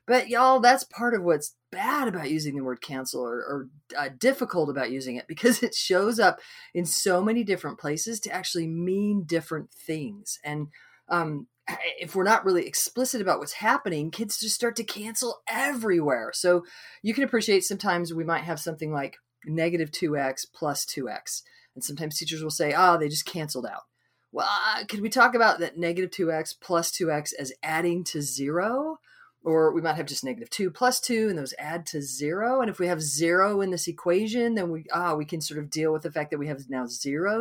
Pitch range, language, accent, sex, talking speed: 145-210 Hz, English, American, female, 200 wpm